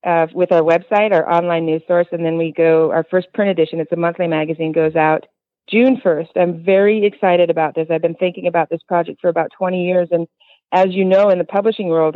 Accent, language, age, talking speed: American, English, 40-59, 230 wpm